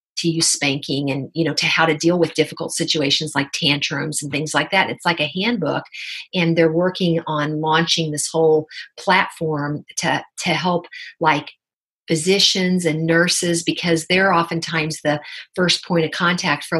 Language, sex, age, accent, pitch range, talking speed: English, female, 50-69, American, 155-180 Hz, 170 wpm